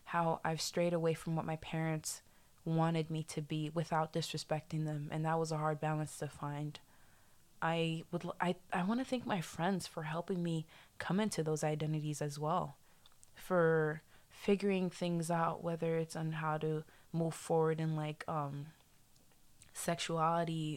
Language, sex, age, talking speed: English, female, 20-39, 160 wpm